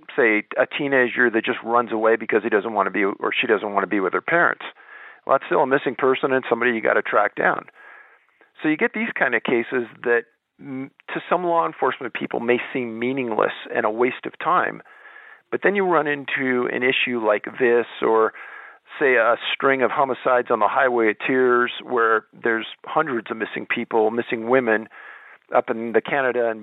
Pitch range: 120-150 Hz